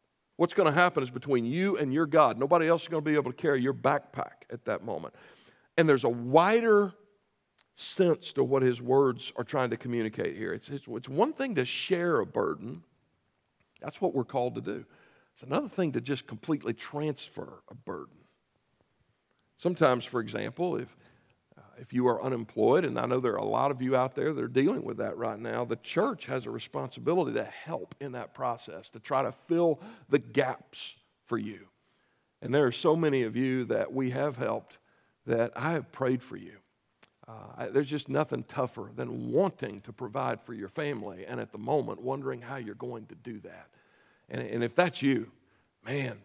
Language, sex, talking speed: English, male, 195 wpm